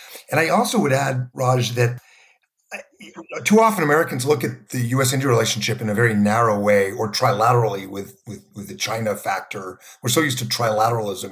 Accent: American